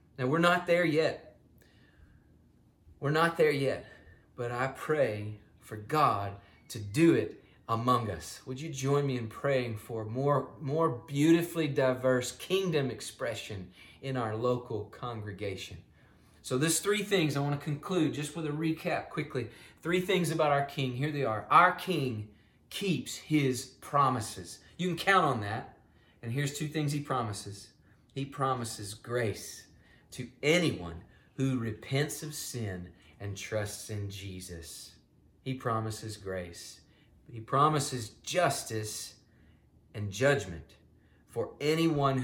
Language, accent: English, American